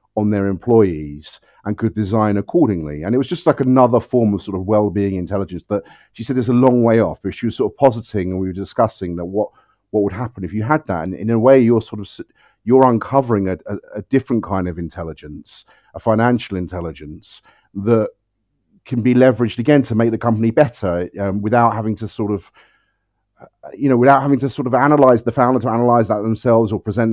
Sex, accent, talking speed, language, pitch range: male, British, 210 wpm, English, 100-130 Hz